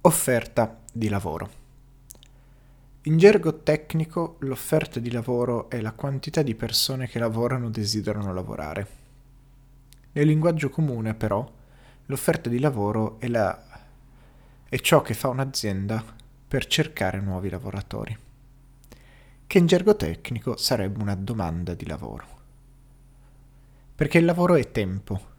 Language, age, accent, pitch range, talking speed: Italian, 30-49, native, 110-135 Hz, 120 wpm